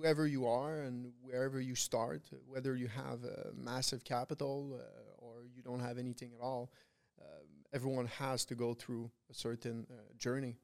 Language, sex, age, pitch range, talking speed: English, male, 20-39, 120-140 Hz, 175 wpm